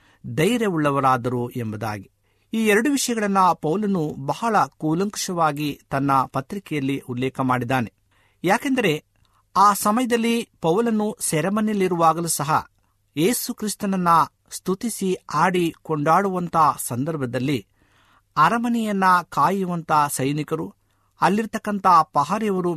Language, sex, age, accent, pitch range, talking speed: Kannada, male, 50-69, native, 135-200 Hz, 70 wpm